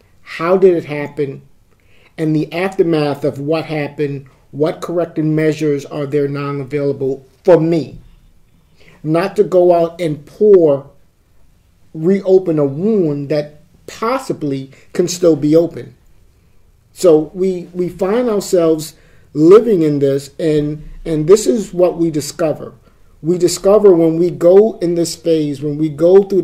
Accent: American